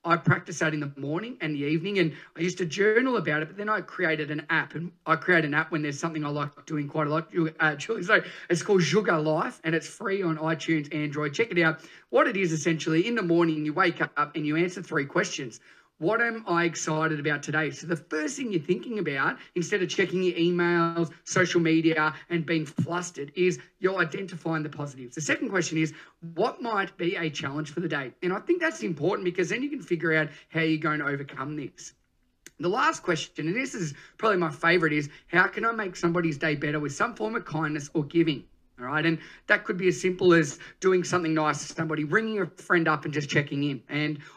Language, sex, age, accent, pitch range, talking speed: English, male, 30-49, Australian, 155-180 Hz, 230 wpm